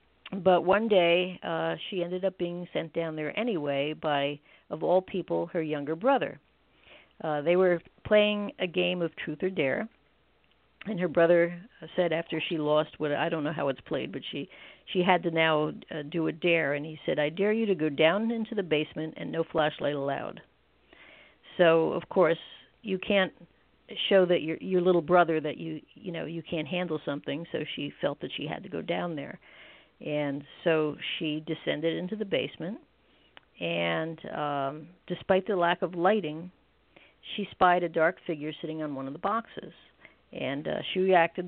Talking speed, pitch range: 185 wpm, 155-185 Hz